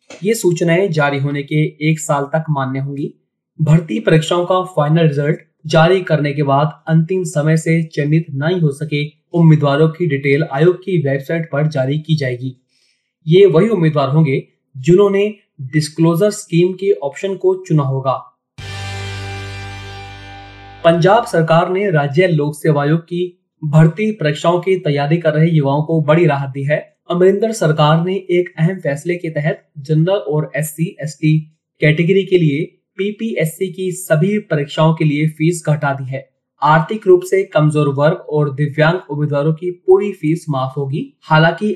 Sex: male